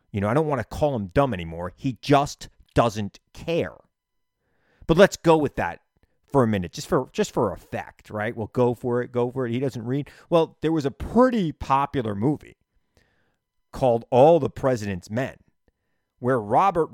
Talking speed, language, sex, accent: 185 wpm, English, male, American